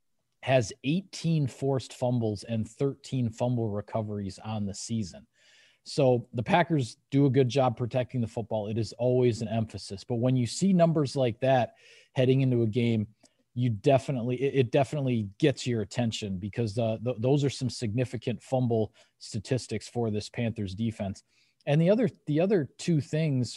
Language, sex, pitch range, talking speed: English, male, 115-140 Hz, 160 wpm